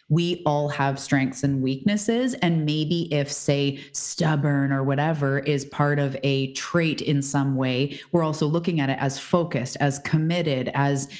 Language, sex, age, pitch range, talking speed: English, female, 30-49, 135-160 Hz, 165 wpm